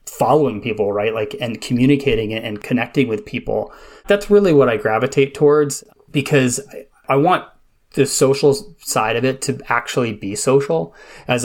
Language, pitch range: English, 115-140 Hz